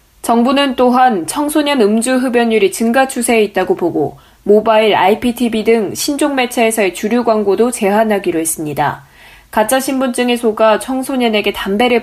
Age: 20-39